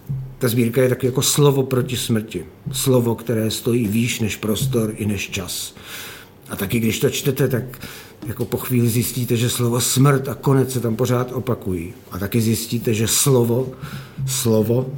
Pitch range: 105-130 Hz